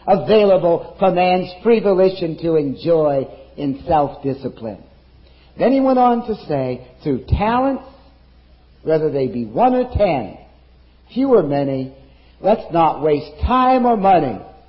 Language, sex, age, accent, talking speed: English, male, 50-69, American, 130 wpm